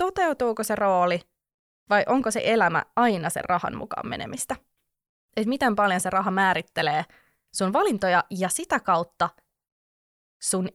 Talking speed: 135 wpm